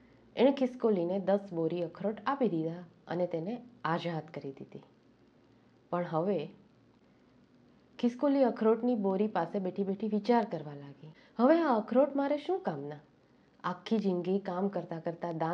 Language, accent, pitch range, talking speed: Gujarati, native, 165-205 Hz, 60 wpm